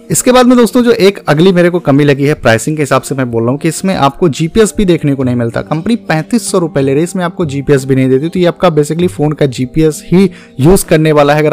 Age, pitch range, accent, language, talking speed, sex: 30-49, 135-175 Hz, native, Hindi, 280 wpm, male